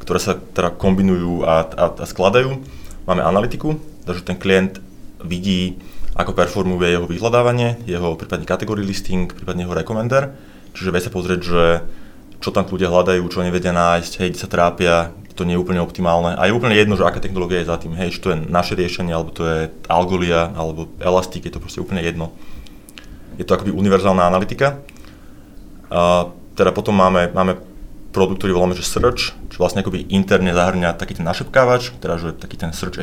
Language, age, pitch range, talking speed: Czech, 20-39, 85-95 Hz, 180 wpm